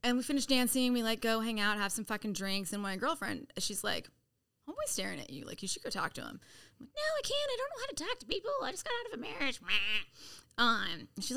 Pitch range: 205-255 Hz